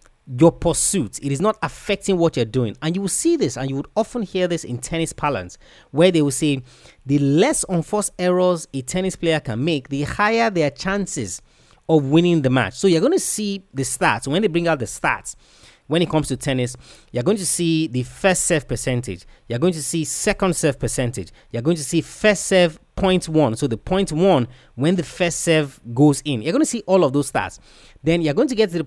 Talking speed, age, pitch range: 230 wpm, 30-49, 130-180 Hz